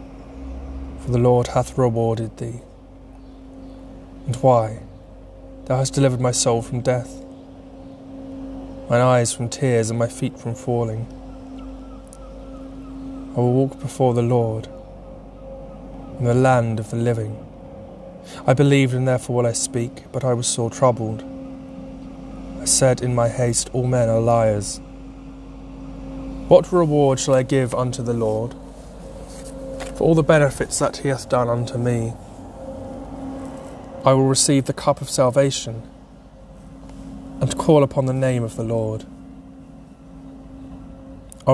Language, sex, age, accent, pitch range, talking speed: English, male, 20-39, British, 110-135 Hz, 130 wpm